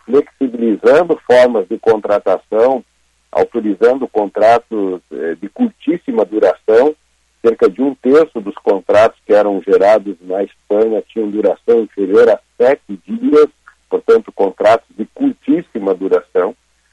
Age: 50-69